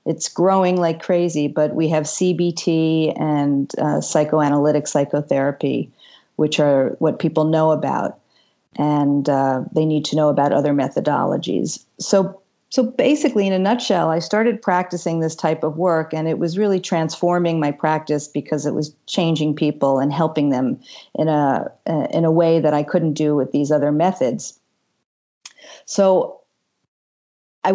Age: 40-59